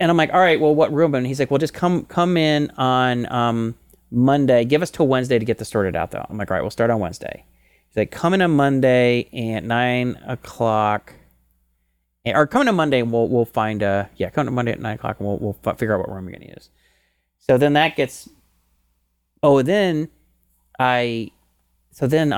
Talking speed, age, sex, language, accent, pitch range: 220 wpm, 30-49, male, English, American, 105-145 Hz